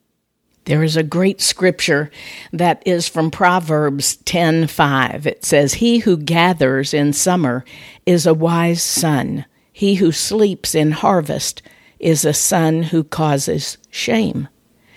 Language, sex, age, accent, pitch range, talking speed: English, female, 50-69, American, 155-185 Hz, 130 wpm